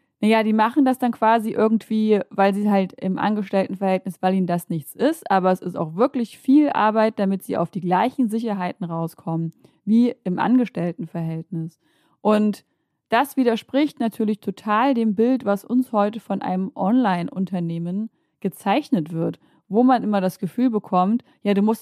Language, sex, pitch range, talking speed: German, female, 185-230 Hz, 160 wpm